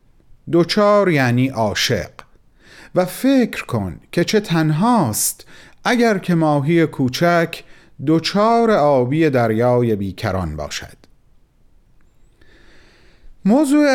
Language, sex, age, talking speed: Persian, male, 40-59, 80 wpm